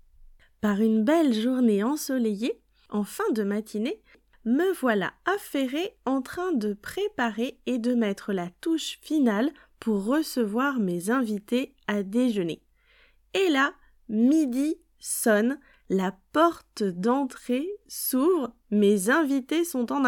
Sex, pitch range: female, 225-295 Hz